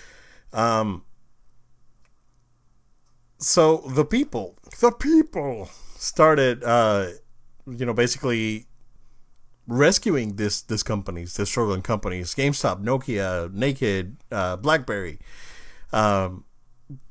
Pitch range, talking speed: 105-140 Hz, 85 wpm